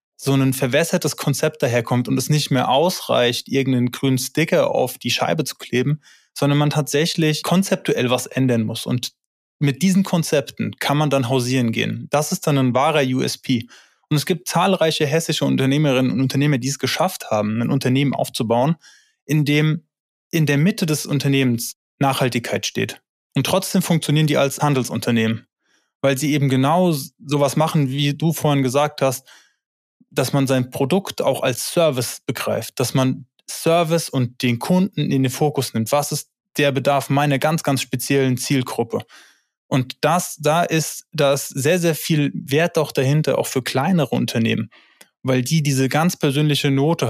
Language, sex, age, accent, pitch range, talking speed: German, male, 20-39, German, 130-150 Hz, 165 wpm